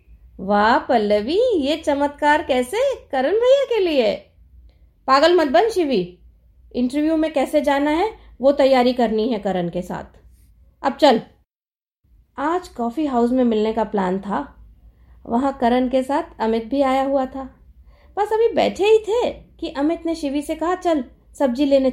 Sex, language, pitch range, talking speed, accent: female, Hindi, 210-320 Hz, 160 wpm, native